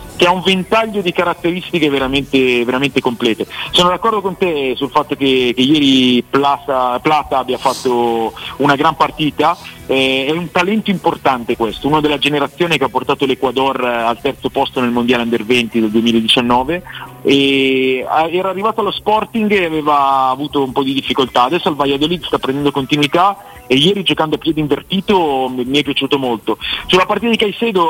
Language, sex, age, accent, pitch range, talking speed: Italian, male, 40-59, native, 125-155 Hz, 170 wpm